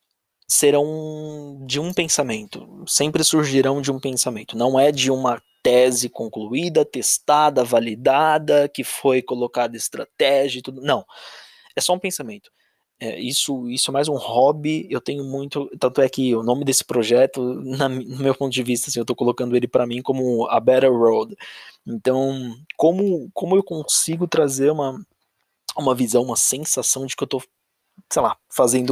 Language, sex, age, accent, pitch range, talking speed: Portuguese, male, 20-39, Brazilian, 125-150 Hz, 165 wpm